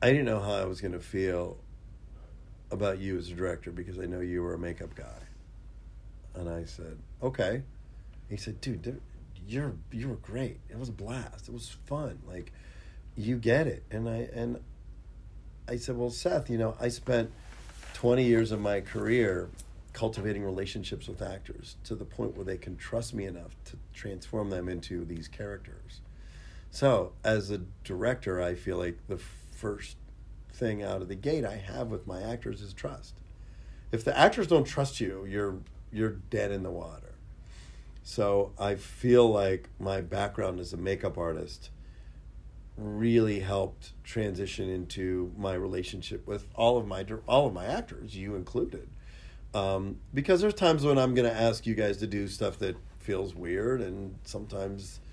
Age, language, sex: 40-59, English, male